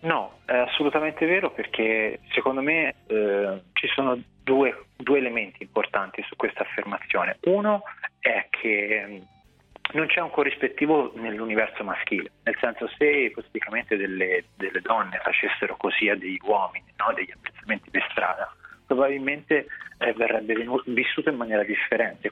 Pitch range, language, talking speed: 115-150 Hz, Italian, 135 wpm